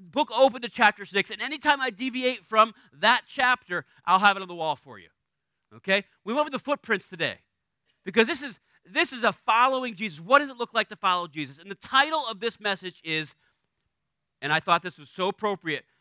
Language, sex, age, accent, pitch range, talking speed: English, male, 30-49, American, 160-245 Hz, 215 wpm